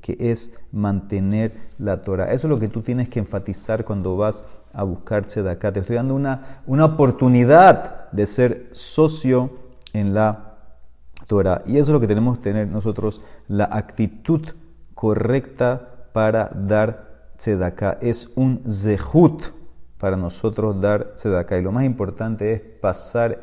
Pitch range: 100-120 Hz